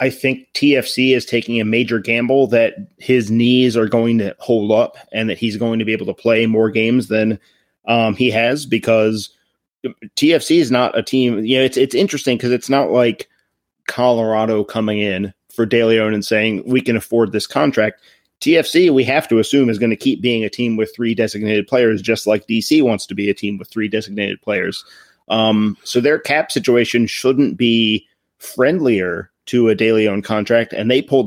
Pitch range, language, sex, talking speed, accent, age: 110-125 Hz, English, male, 195 wpm, American, 30-49